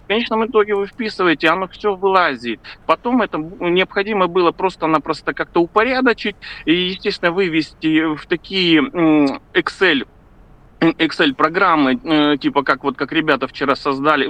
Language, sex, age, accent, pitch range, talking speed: Russian, male, 40-59, native, 145-195 Hz, 125 wpm